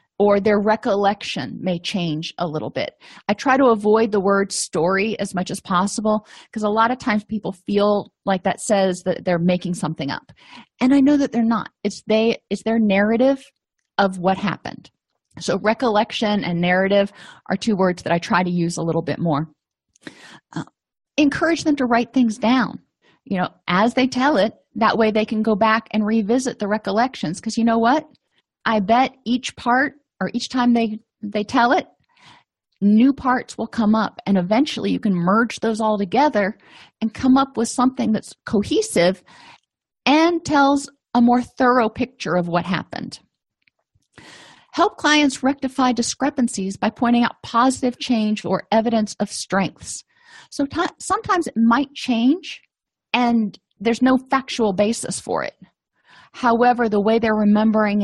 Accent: American